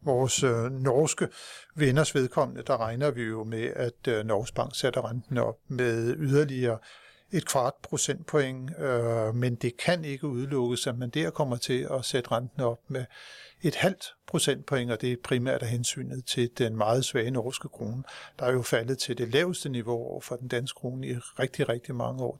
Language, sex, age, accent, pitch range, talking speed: Danish, male, 60-79, native, 120-140 Hz, 190 wpm